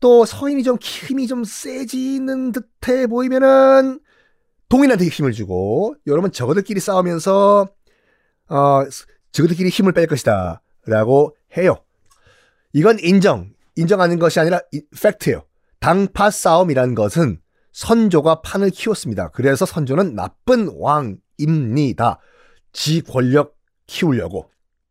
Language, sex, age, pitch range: Korean, male, 30-49, 135-225 Hz